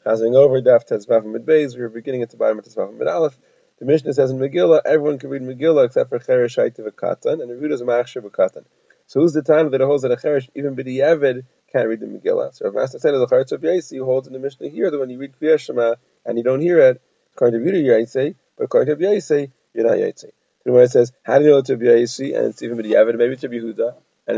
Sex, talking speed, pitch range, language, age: male, 245 wpm, 120-165 Hz, English, 30-49